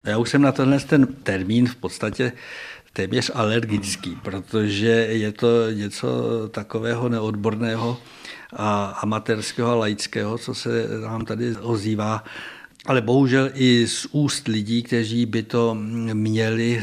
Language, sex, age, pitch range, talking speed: Czech, male, 60-79, 105-115 Hz, 130 wpm